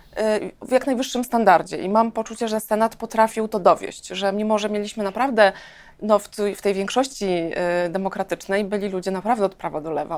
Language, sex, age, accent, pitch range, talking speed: Polish, female, 20-39, native, 190-215 Hz, 165 wpm